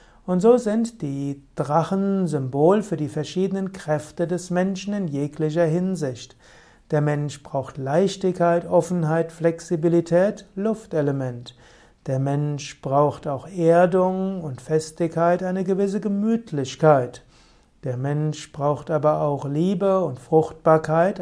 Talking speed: 115 wpm